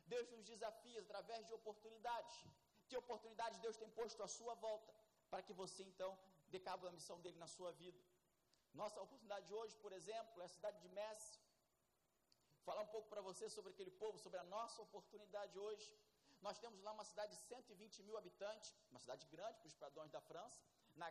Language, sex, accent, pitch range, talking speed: Portuguese, male, Brazilian, 190-225 Hz, 195 wpm